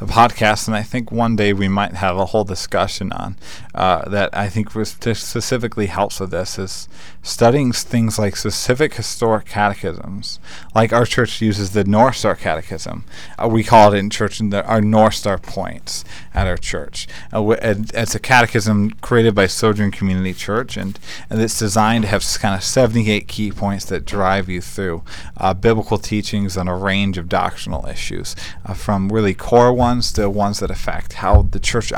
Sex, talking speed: male, 190 wpm